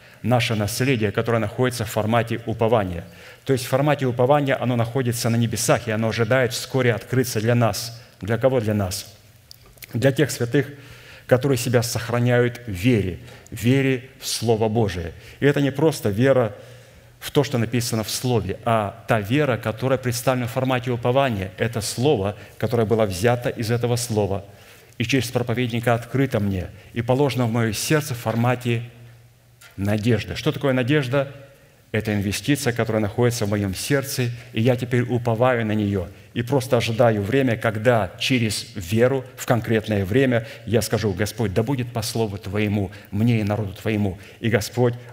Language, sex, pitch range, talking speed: Russian, male, 110-125 Hz, 160 wpm